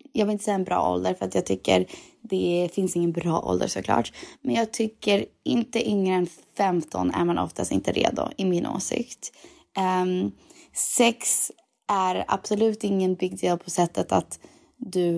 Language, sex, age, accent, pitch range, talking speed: English, female, 20-39, Swedish, 170-205 Hz, 170 wpm